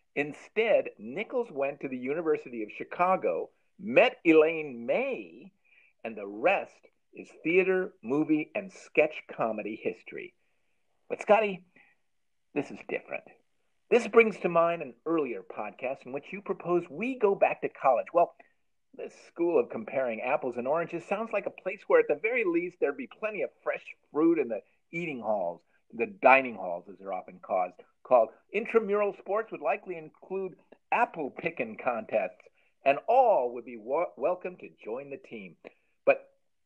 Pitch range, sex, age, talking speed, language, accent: 125-210 Hz, male, 50-69, 155 wpm, English, American